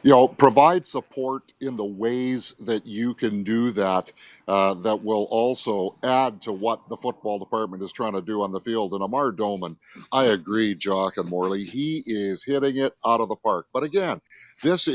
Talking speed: 195 wpm